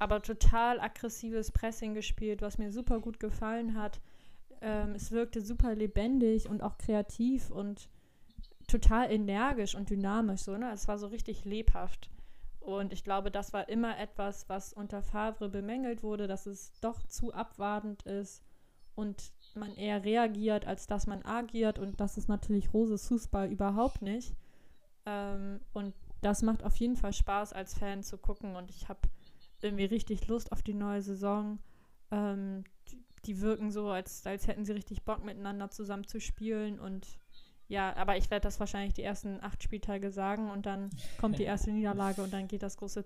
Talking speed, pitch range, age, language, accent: 175 wpm, 200-225 Hz, 10-29, German, German